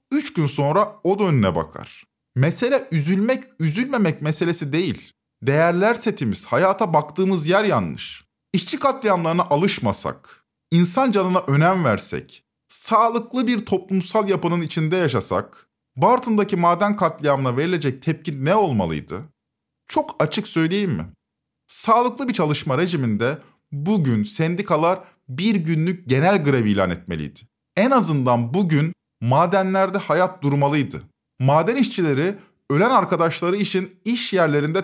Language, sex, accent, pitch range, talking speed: Turkish, male, native, 145-200 Hz, 115 wpm